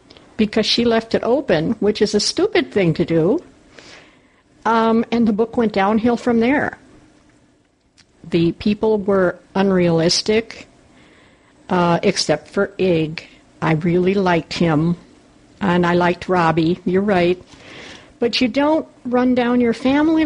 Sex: female